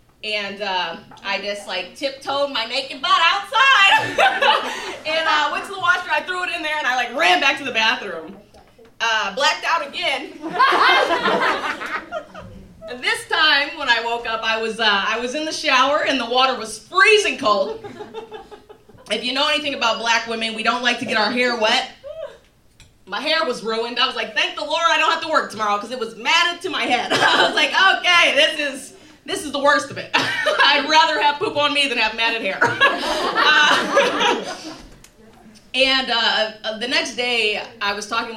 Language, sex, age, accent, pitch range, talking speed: English, female, 30-49, American, 220-315 Hz, 190 wpm